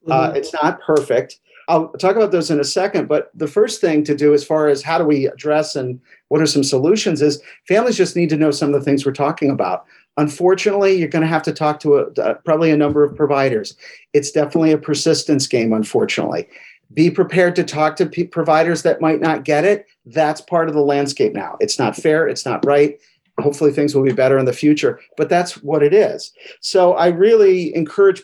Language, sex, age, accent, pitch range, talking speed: English, male, 50-69, American, 145-165 Hz, 220 wpm